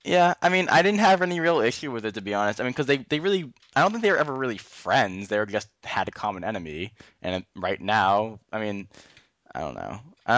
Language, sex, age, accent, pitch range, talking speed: English, male, 10-29, American, 95-125 Hz, 255 wpm